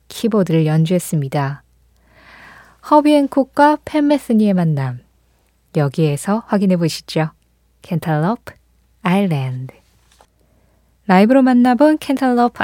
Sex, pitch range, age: female, 165-225 Hz, 20-39